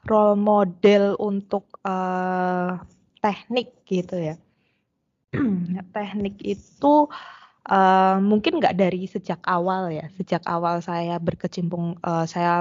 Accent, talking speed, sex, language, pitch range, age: native, 110 wpm, female, Indonesian, 170-200 Hz, 20-39